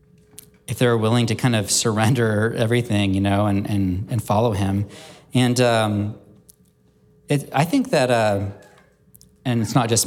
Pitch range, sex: 105-125 Hz, male